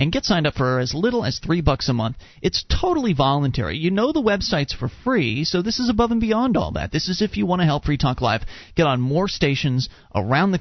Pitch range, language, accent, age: 135-200 Hz, English, American, 30-49